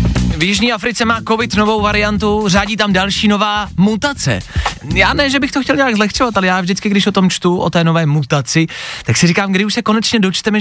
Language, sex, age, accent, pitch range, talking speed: Czech, male, 20-39, native, 160-210 Hz, 220 wpm